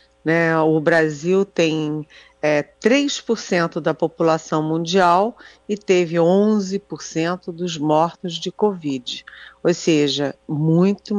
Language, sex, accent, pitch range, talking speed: Portuguese, female, Brazilian, 150-190 Hz, 90 wpm